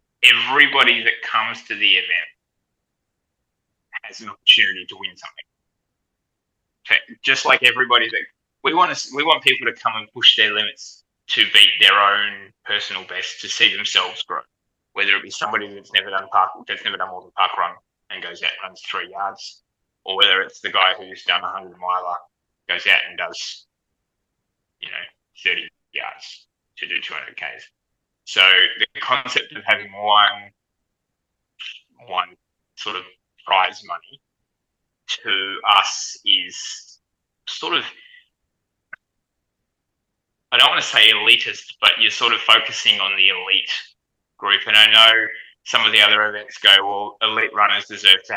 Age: 20-39